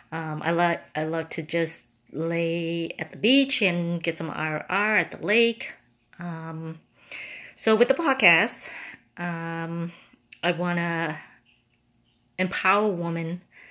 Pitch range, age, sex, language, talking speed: 165-190 Hz, 30-49, female, English, 130 wpm